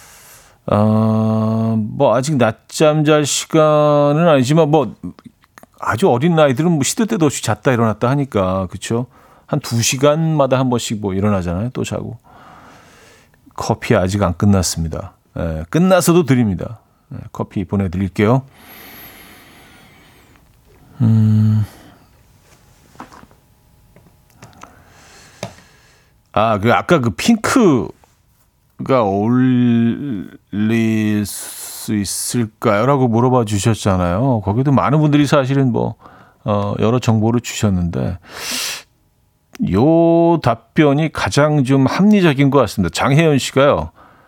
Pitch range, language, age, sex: 105-145 Hz, Korean, 40-59, male